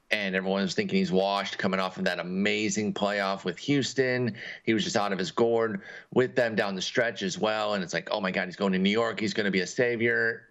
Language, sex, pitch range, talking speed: English, male, 100-135 Hz, 255 wpm